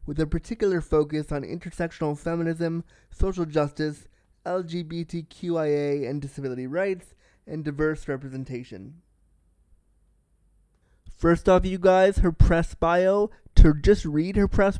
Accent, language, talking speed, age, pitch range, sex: American, English, 115 wpm, 20-39, 140-180 Hz, male